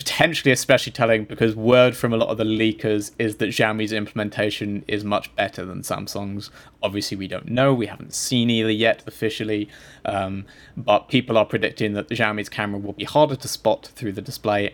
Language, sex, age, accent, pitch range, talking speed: English, male, 20-39, British, 105-120 Hz, 190 wpm